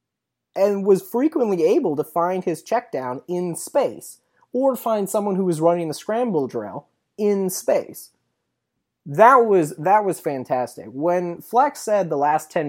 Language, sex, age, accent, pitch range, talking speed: English, male, 30-49, American, 140-190 Hz, 155 wpm